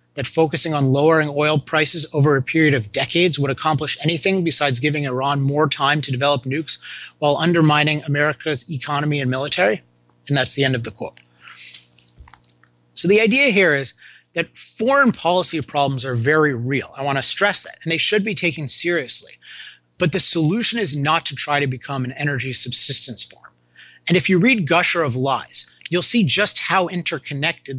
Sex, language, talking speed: male, English, 180 wpm